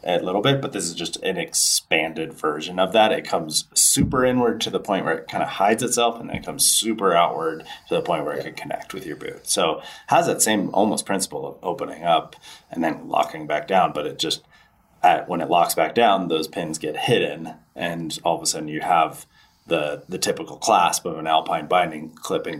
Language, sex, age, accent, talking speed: English, male, 30-49, American, 225 wpm